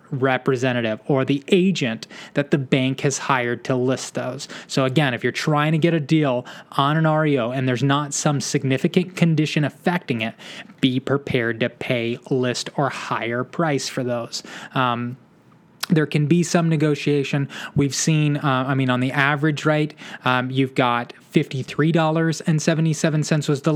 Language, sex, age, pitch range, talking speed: English, male, 20-39, 130-170 Hz, 160 wpm